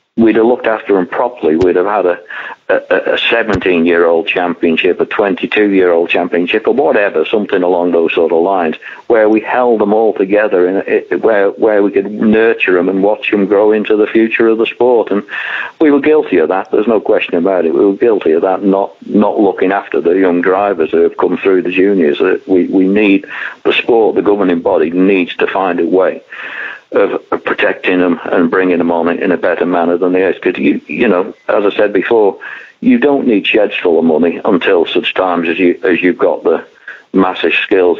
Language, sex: English, male